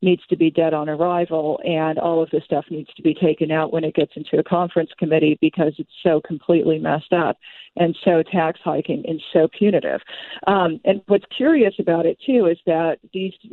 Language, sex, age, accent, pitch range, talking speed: English, female, 50-69, American, 160-185 Hz, 200 wpm